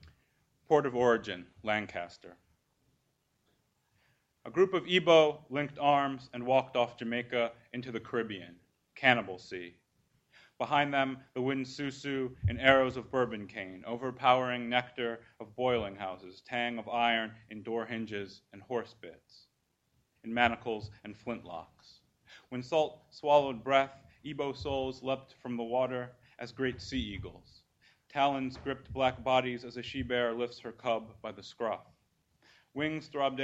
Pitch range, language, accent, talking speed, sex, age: 115-135 Hz, English, American, 135 wpm, male, 30-49